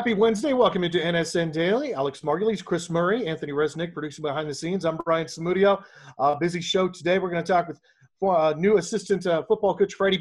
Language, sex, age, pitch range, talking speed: English, male, 40-59, 155-195 Hz, 200 wpm